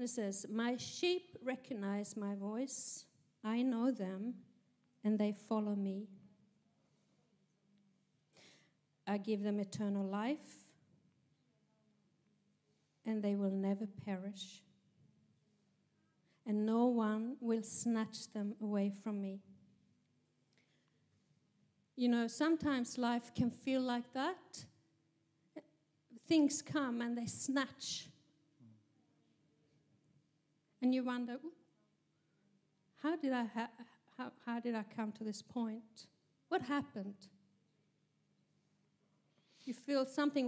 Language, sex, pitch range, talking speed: English, female, 190-250 Hz, 95 wpm